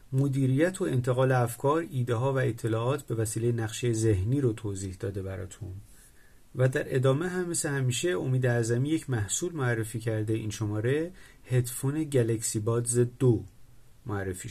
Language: Persian